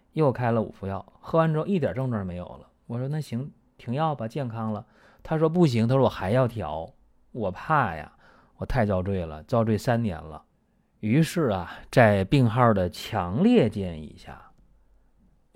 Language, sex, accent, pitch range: Chinese, male, native, 95-130 Hz